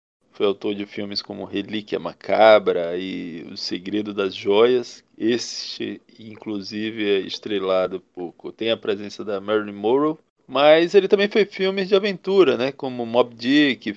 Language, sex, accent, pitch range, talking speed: Portuguese, male, Brazilian, 110-155 Hz, 145 wpm